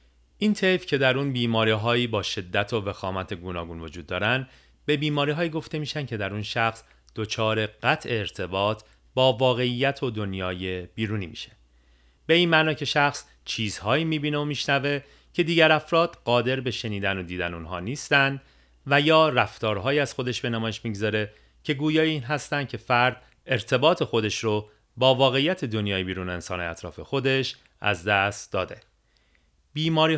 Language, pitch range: Persian, 105-145 Hz